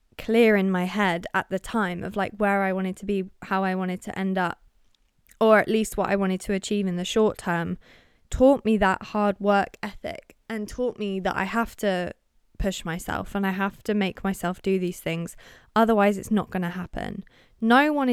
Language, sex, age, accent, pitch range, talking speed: English, female, 20-39, British, 185-220 Hz, 210 wpm